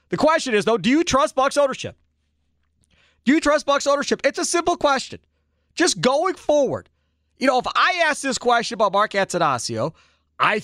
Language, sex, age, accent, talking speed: English, male, 40-59, American, 180 wpm